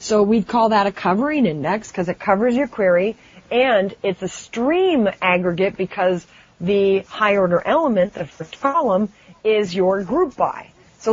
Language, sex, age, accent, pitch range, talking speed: English, female, 30-49, American, 190-240 Hz, 160 wpm